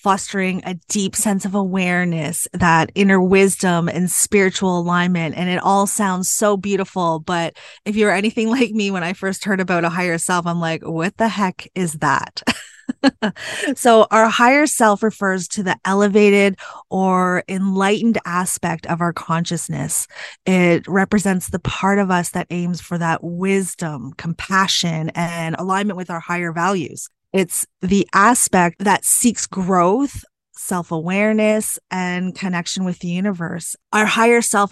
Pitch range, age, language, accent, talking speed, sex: 170-200 Hz, 20-39, English, American, 150 wpm, female